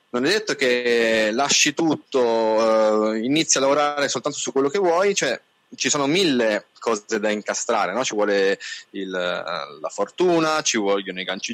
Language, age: Italian, 30-49